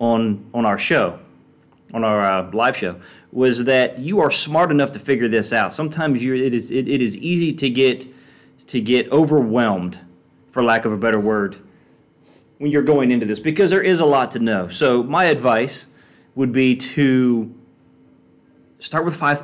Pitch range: 110-145 Hz